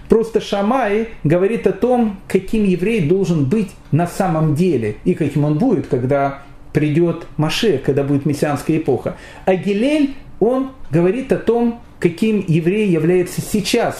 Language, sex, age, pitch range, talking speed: Russian, male, 40-59, 140-190 Hz, 140 wpm